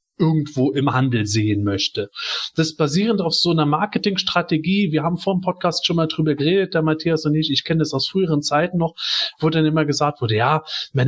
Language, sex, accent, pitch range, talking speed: German, male, German, 145-185 Hz, 210 wpm